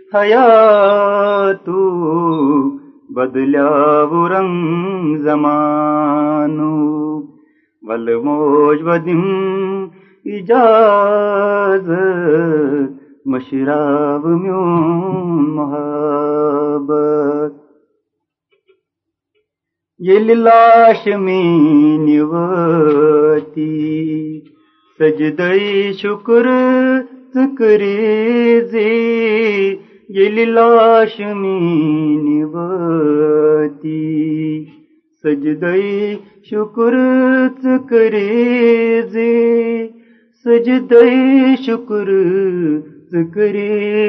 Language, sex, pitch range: Urdu, male, 150-225 Hz